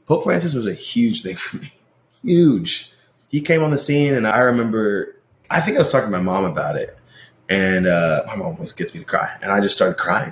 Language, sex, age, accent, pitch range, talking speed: English, male, 20-39, American, 90-125 Hz, 240 wpm